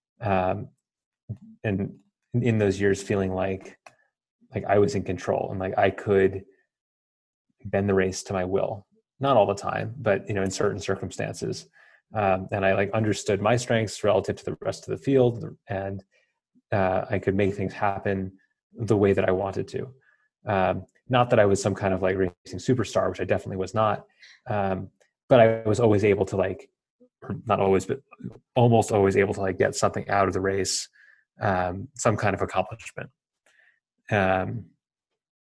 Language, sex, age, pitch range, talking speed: English, male, 30-49, 95-110 Hz, 175 wpm